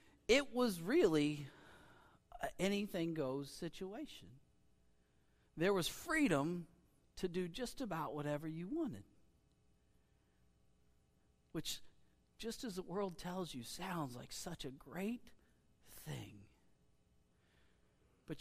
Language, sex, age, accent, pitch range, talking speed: English, male, 40-59, American, 130-200 Hz, 100 wpm